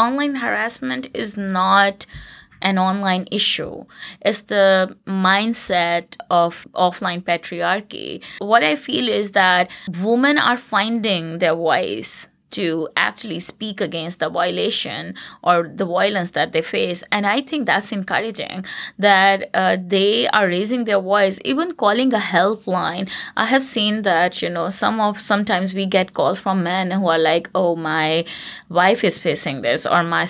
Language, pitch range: English, 180-220 Hz